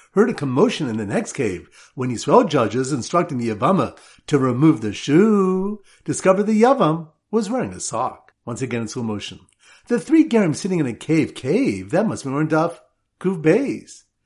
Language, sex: English, male